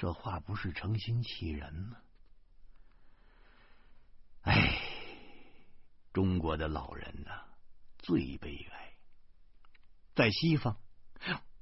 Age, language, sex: 60-79, Chinese, male